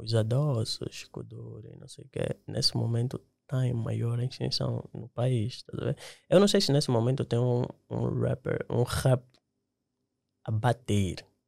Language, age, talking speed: Portuguese, 20-39, 145 wpm